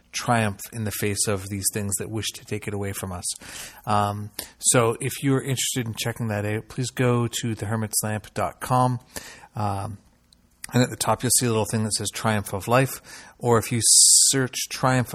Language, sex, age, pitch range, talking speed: English, male, 40-59, 105-120 Hz, 190 wpm